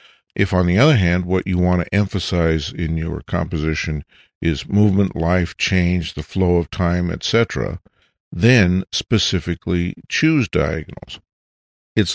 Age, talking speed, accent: 50-69, 135 wpm, American